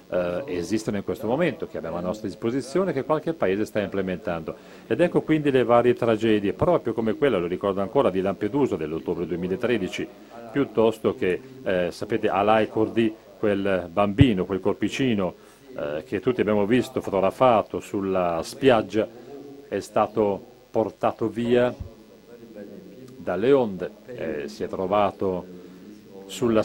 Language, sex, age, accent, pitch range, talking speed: Italian, male, 40-59, native, 100-130 Hz, 135 wpm